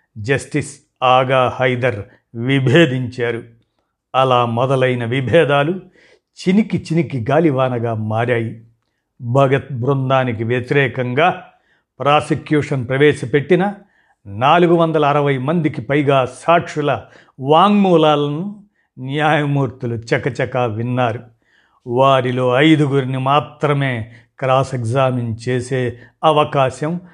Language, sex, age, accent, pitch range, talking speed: Telugu, male, 50-69, native, 125-155 Hz, 75 wpm